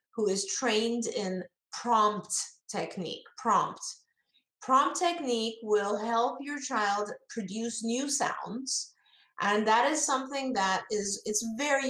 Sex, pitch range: female, 195-245 Hz